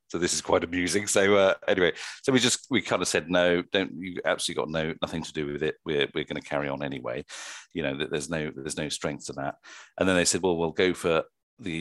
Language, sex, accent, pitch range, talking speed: English, male, British, 75-95 Hz, 265 wpm